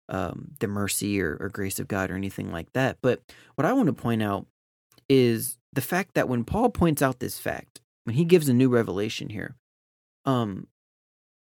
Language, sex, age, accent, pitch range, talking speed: English, male, 30-49, American, 110-150 Hz, 195 wpm